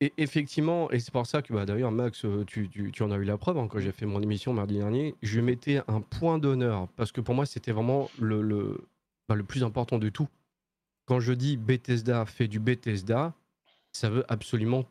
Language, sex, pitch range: French, male, 110-145 Hz